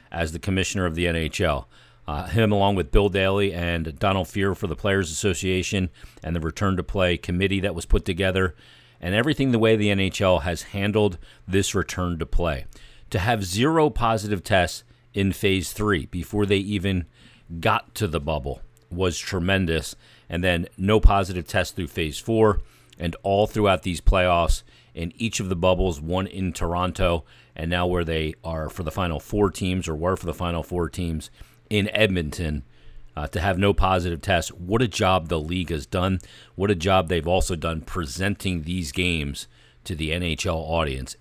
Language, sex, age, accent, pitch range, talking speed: English, male, 40-59, American, 85-100 Hz, 180 wpm